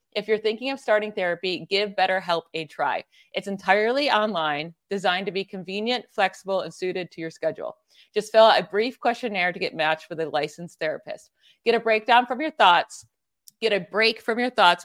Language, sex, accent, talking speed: English, female, American, 195 wpm